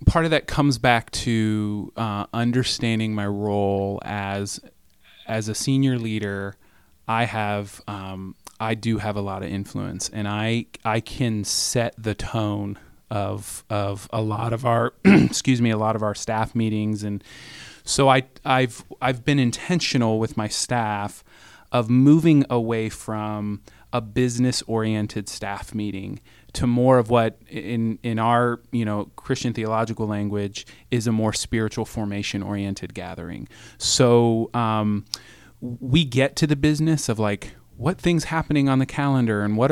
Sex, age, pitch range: male, 30-49, 105-125 Hz